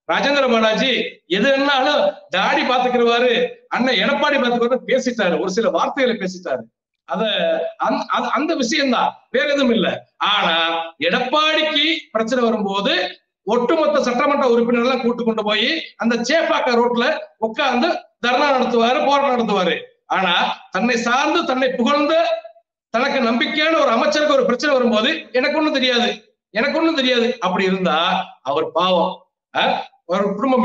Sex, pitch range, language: male, 210-290 Hz, Tamil